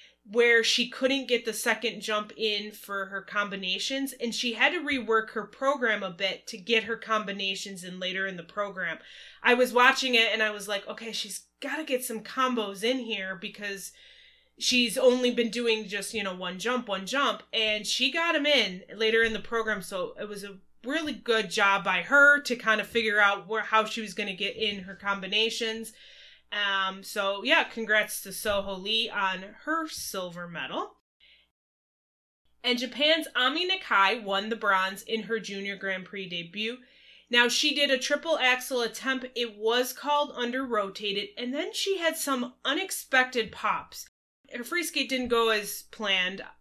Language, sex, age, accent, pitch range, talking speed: English, female, 20-39, American, 200-255 Hz, 180 wpm